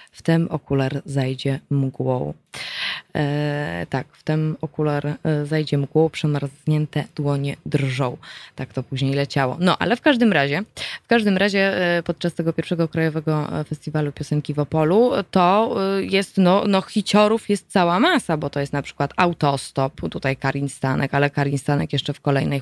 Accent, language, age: native, Polish, 20-39